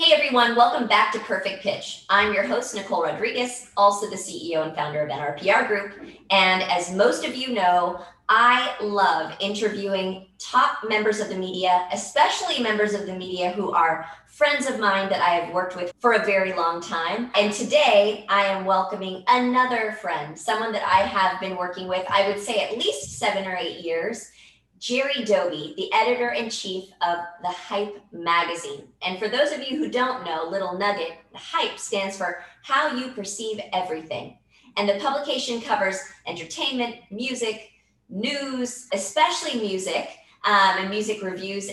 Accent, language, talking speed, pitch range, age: American, English, 170 wpm, 185-245 Hz, 30-49